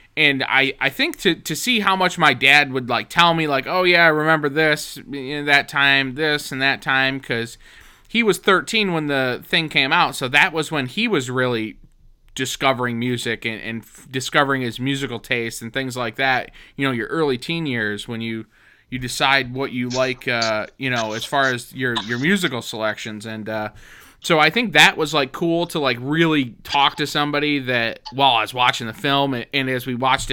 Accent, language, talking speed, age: American, English, 215 wpm, 20-39